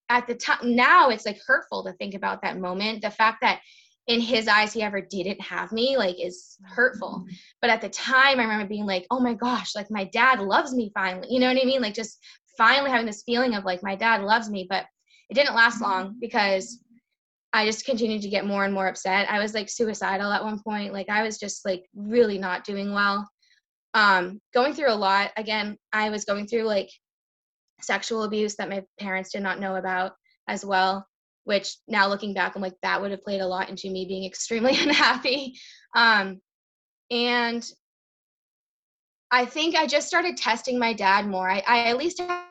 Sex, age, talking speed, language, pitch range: female, 10-29, 205 wpm, English, 195-240 Hz